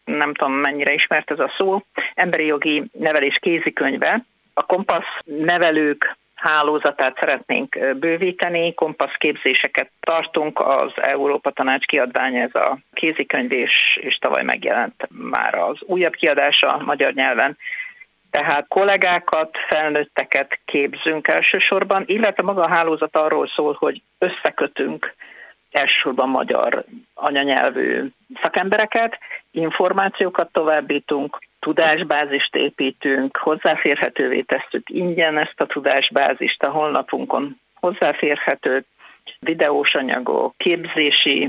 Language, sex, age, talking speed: Hungarian, female, 50-69, 100 wpm